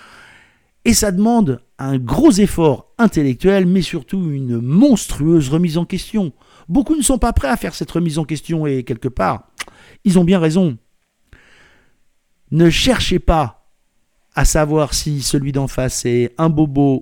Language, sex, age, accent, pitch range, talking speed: French, male, 50-69, French, 120-175 Hz, 155 wpm